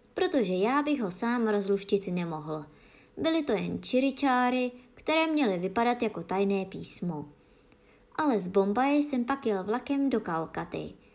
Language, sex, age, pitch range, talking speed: Czech, male, 20-39, 185-260 Hz, 140 wpm